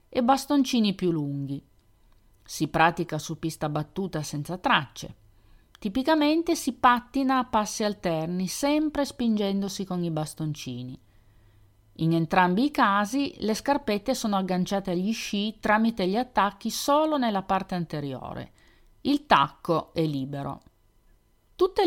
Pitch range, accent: 155-230 Hz, native